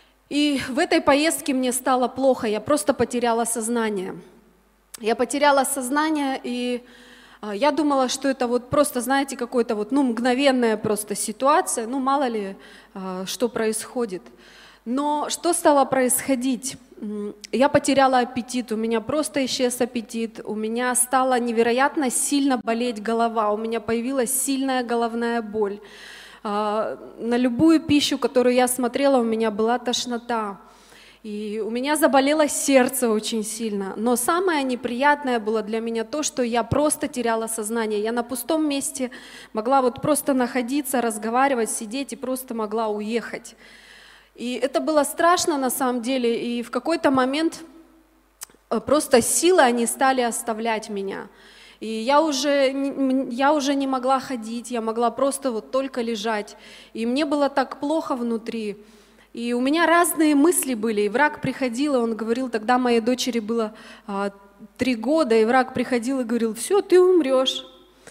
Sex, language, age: female, Russian, 20-39